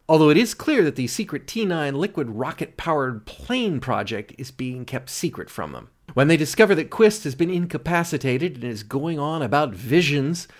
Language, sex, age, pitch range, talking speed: English, male, 40-59, 125-175 Hz, 180 wpm